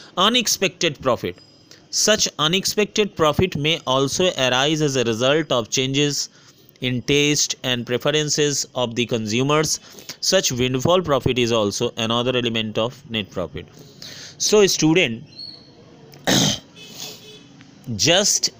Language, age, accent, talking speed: Hindi, 30-49, native, 105 wpm